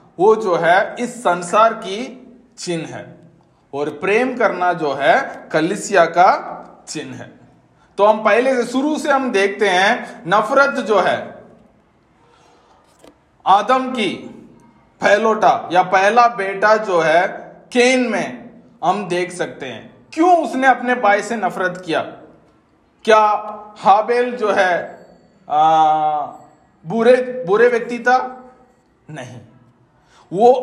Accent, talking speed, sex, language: native, 120 wpm, male, Hindi